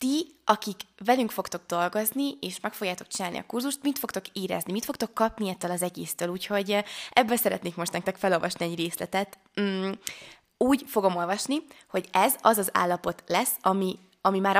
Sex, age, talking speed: female, 20-39, 170 wpm